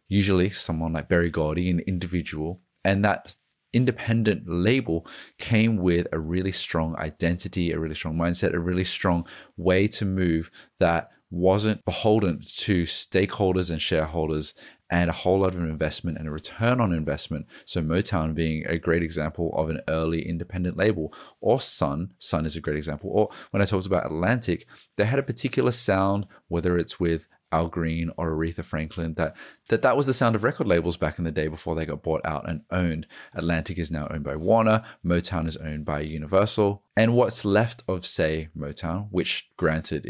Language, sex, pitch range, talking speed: English, male, 80-100 Hz, 180 wpm